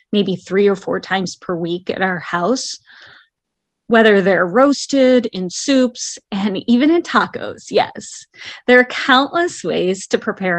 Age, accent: 30-49, American